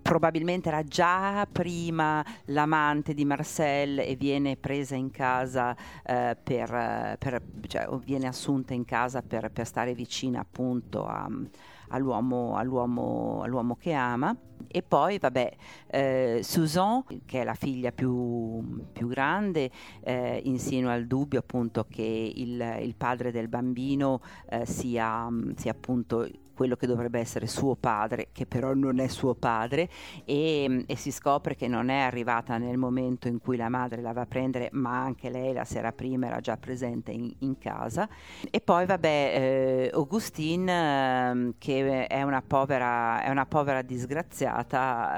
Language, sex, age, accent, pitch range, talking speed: Italian, female, 50-69, native, 120-140 Hz, 150 wpm